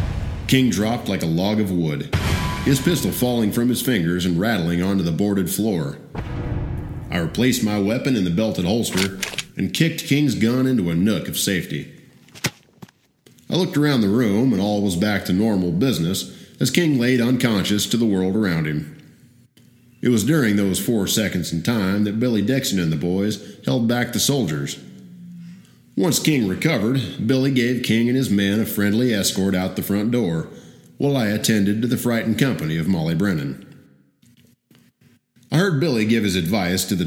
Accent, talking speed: American, 175 wpm